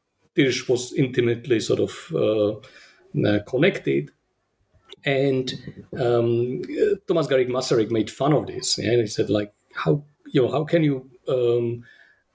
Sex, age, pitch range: male, 50-69, 105-130 Hz